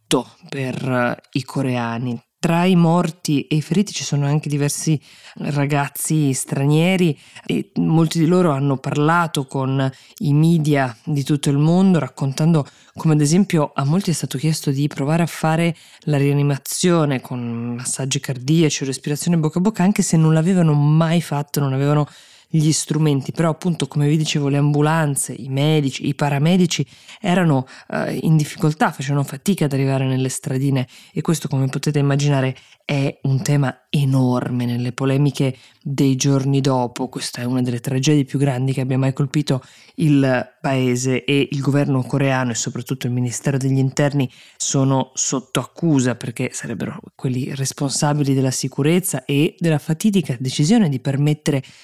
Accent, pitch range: native, 135-155 Hz